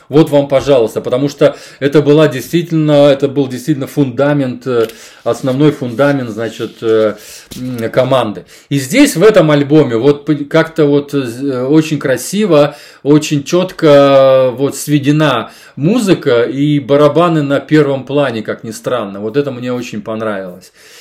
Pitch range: 135-160 Hz